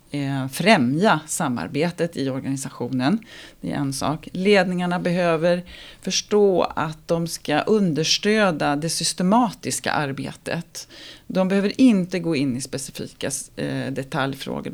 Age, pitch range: 40-59, 135-165 Hz